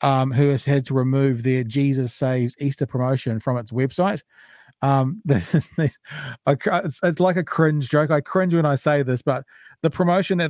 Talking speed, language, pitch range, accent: 175 wpm, English, 130-160 Hz, Australian